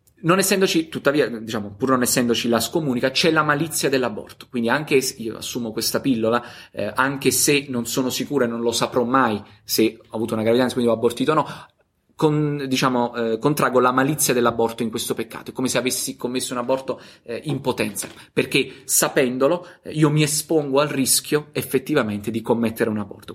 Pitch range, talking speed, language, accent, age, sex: 115-145 Hz, 190 wpm, Italian, native, 30-49, male